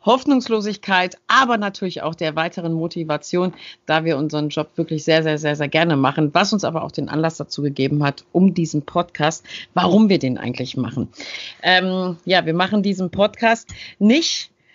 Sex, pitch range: female, 160-185 Hz